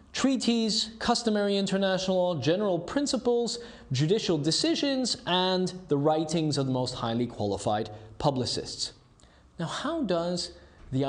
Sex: male